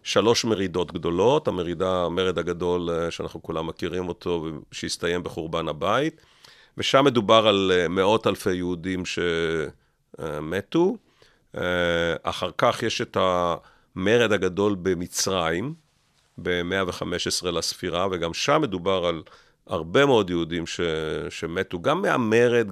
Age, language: 40-59, Hebrew